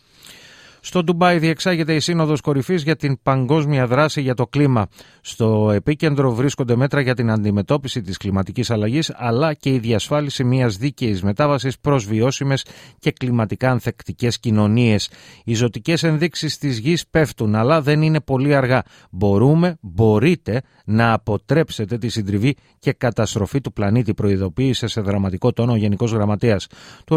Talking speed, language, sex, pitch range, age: 145 wpm, Greek, male, 110-140 Hz, 30-49